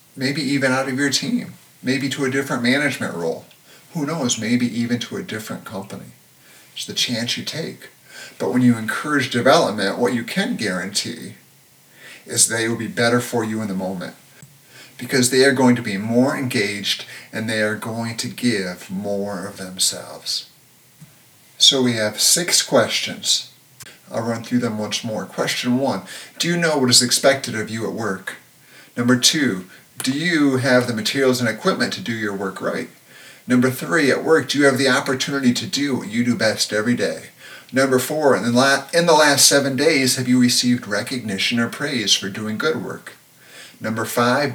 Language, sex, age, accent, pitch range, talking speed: English, male, 50-69, American, 115-135 Hz, 180 wpm